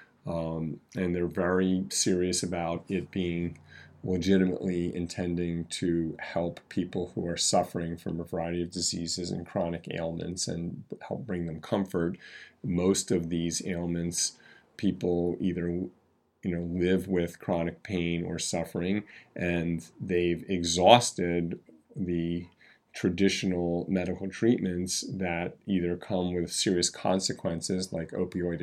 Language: English